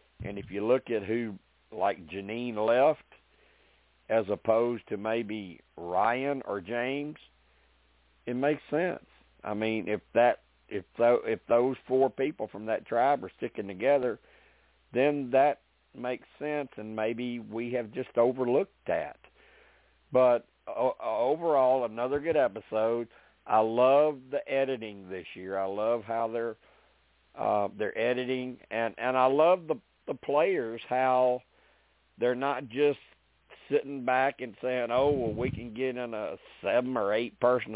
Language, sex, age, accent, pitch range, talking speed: English, male, 50-69, American, 105-130 Hz, 145 wpm